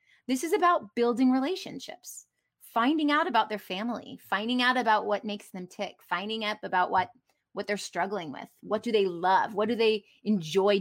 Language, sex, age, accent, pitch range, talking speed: English, female, 20-39, American, 200-260 Hz, 185 wpm